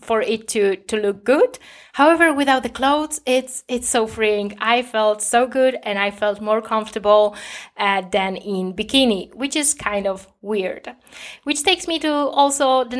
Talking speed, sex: 175 wpm, female